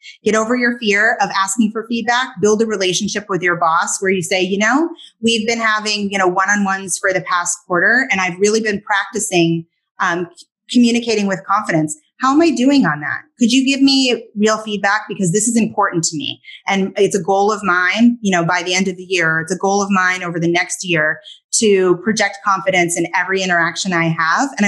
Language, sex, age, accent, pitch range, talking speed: English, female, 30-49, American, 180-235 Hz, 215 wpm